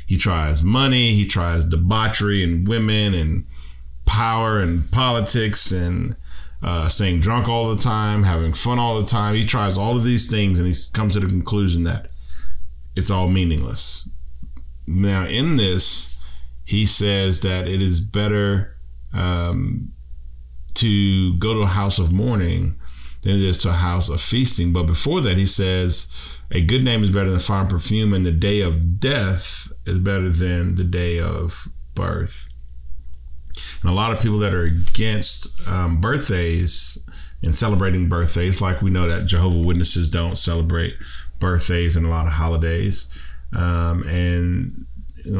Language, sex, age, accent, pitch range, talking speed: English, male, 40-59, American, 80-100 Hz, 160 wpm